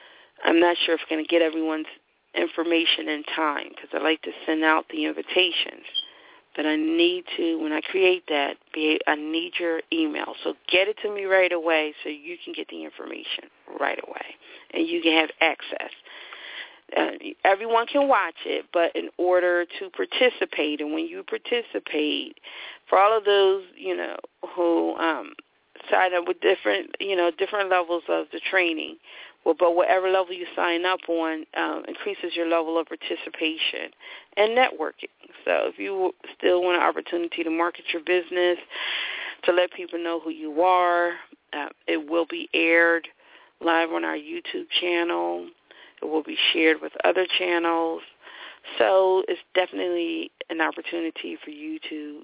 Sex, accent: female, American